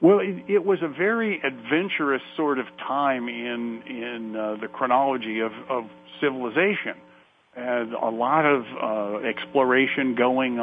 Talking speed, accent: 135 wpm, American